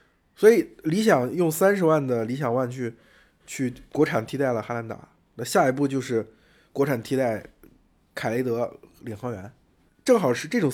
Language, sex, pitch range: Chinese, male, 110-150 Hz